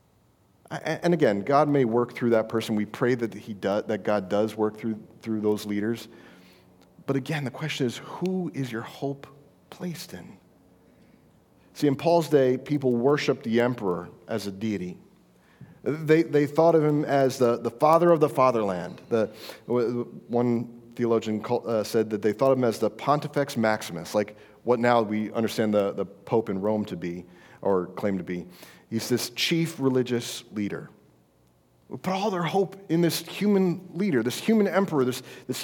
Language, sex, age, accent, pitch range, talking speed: English, male, 40-59, American, 115-185 Hz, 175 wpm